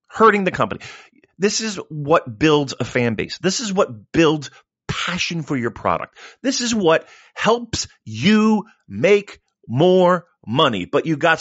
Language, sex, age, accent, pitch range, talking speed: English, male, 40-59, American, 165-250 Hz, 155 wpm